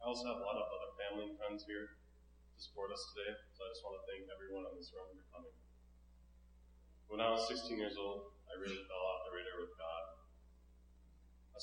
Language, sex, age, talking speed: English, male, 30-49, 215 wpm